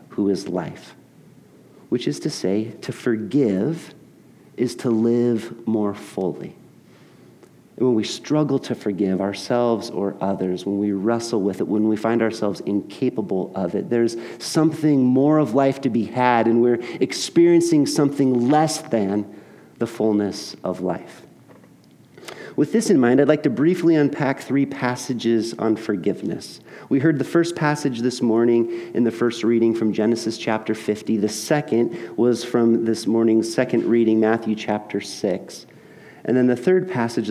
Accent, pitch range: American, 110-150 Hz